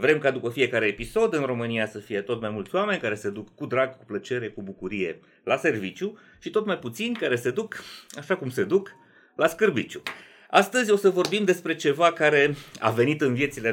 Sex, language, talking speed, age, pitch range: male, Romanian, 210 wpm, 30-49, 115-150 Hz